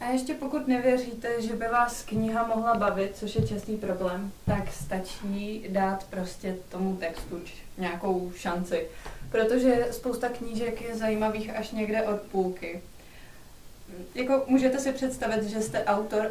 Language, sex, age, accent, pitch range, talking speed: Czech, female, 20-39, native, 190-220 Hz, 140 wpm